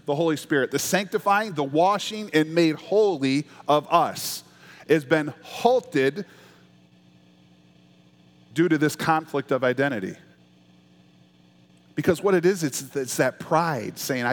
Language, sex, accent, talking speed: English, male, American, 125 wpm